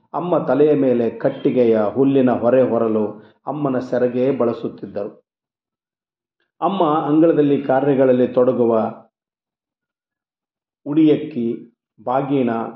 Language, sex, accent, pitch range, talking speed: Kannada, male, native, 120-150 Hz, 75 wpm